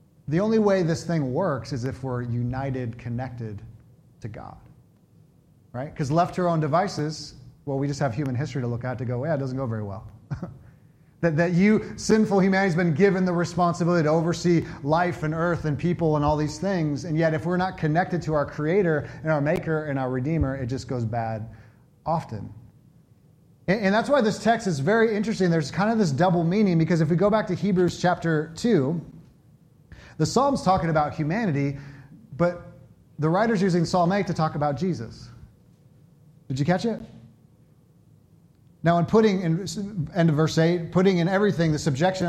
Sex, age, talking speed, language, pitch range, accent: male, 30-49, 190 wpm, English, 140-185 Hz, American